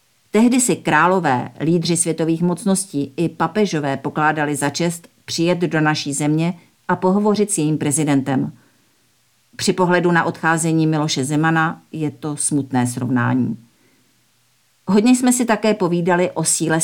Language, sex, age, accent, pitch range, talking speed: Czech, female, 50-69, native, 140-175 Hz, 130 wpm